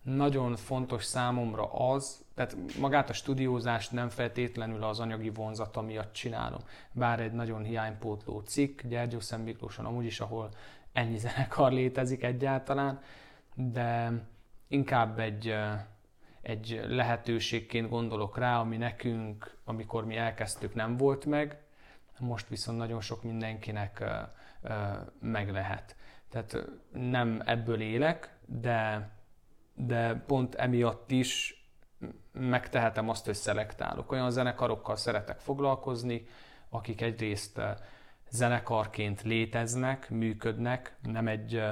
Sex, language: male, Hungarian